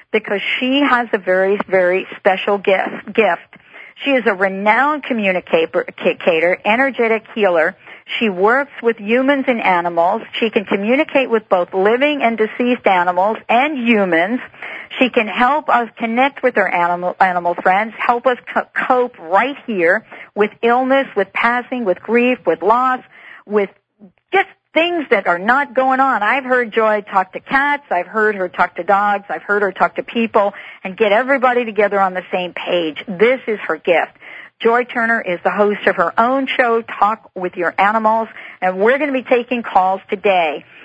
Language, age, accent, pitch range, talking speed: English, 50-69, American, 190-250 Hz, 170 wpm